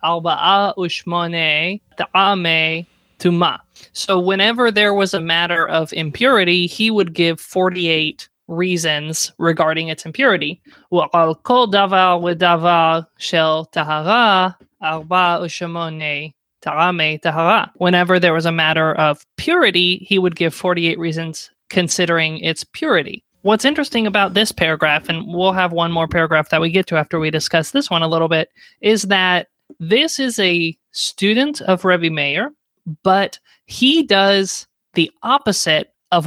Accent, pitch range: American, 165-200 Hz